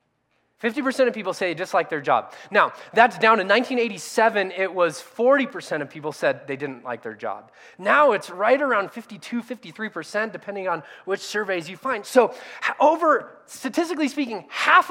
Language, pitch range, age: English, 185-265 Hz, 20-39